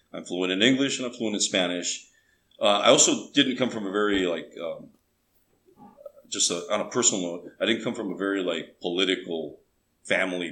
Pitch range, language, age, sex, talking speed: 95-120 Hz, English, 40-59, male, 195 wpm